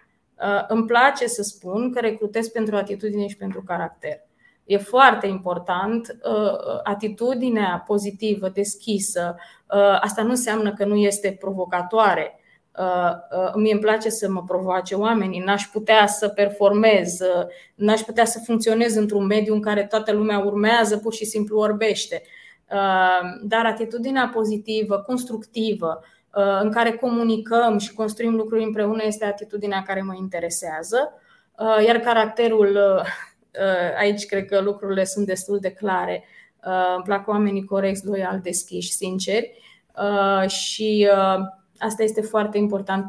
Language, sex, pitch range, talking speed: Romanian, female, 195-225 Hz, 125 wpm